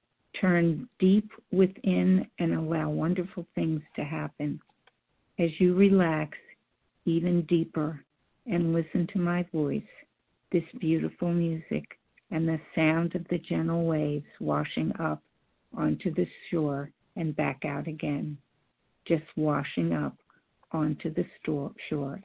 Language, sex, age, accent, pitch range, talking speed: English, female, 50-69, American, 155-180 Hz, 120 wpm